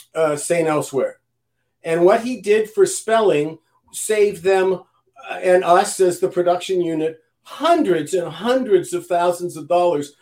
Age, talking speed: 50-69, 145 wpm